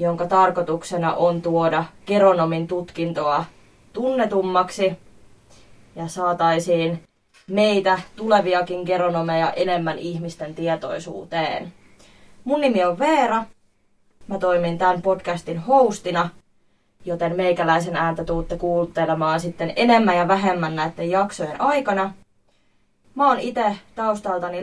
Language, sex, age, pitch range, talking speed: Finnish, female, 20-39, 170-210 Hz, 95 wpm